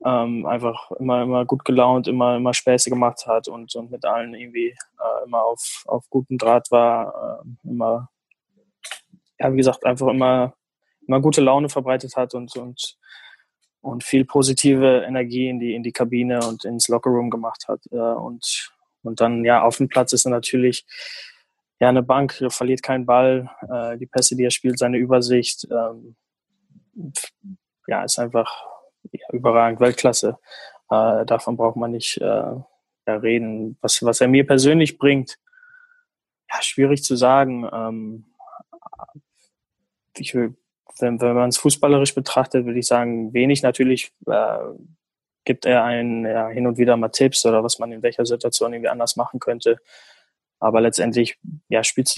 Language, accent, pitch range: German, German, 120-130 Hz